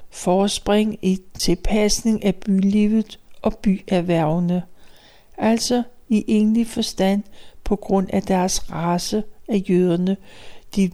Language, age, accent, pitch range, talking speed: Danish, 60-79, native, 185-220 Hz, 105 wpm